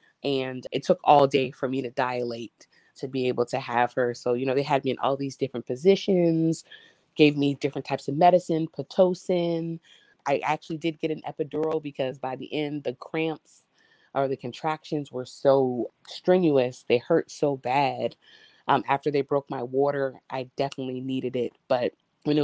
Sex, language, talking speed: female, English, 180 wpm